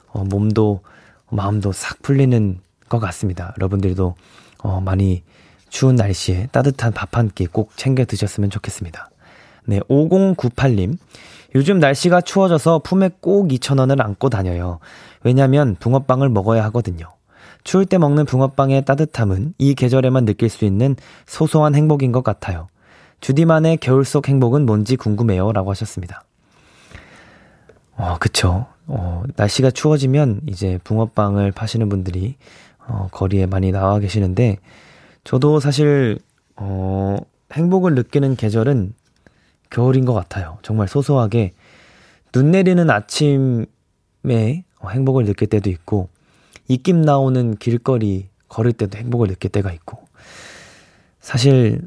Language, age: Korean, 20-39